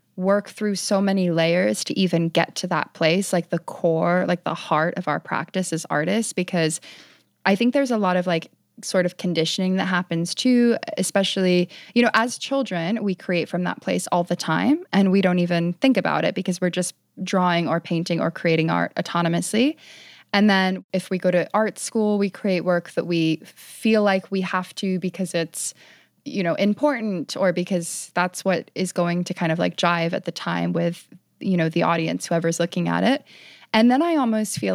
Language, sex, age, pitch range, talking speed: English, female, 20-39, 175-195 Hz, 200 wpm